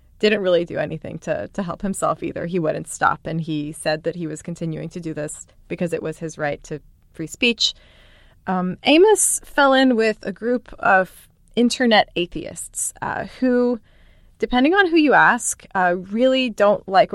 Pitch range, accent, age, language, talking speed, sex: 165-215 Hz, American, 20-39, English, 180 wpm, female